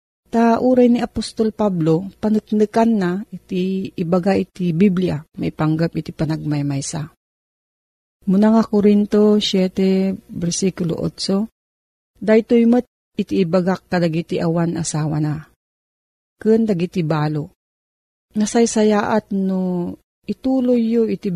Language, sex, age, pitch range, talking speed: Filipino, female, 40-59, 160-210 Hz, 110 wpm